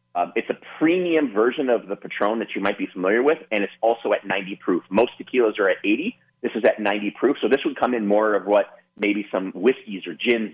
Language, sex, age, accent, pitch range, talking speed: English, male, 30-49, American, 105-175 Hz, 245 wpm